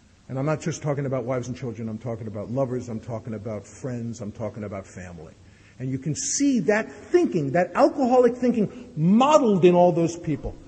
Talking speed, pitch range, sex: 195 wpm, 110-160 Hz, male